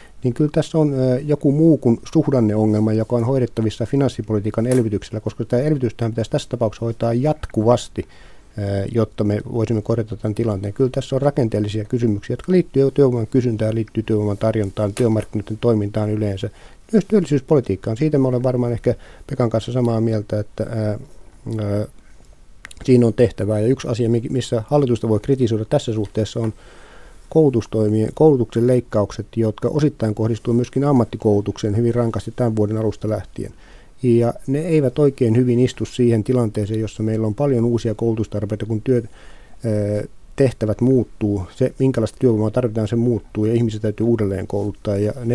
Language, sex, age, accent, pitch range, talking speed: Finnish, male, 50-69, native, 105-125 Hz, 150 wpm